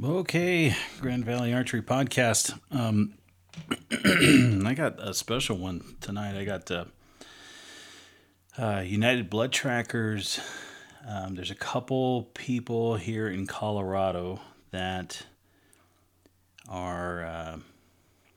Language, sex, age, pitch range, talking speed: English, male, 30-49, 90-110 Hz, 95 wpm